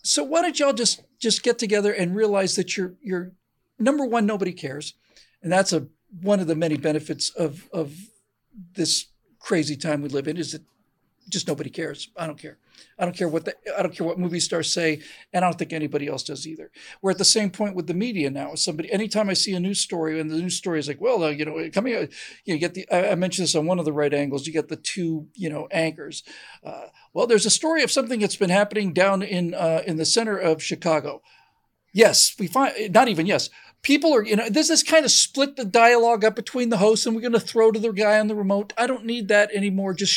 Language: English